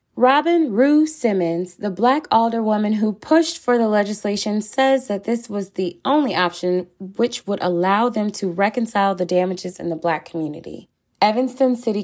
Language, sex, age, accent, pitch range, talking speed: English, female, 20-39, American, 175-230 Hz, 165 wpm